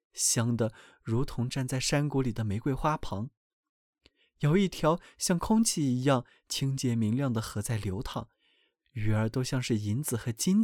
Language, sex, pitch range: Chinese, male, 120-170 Hz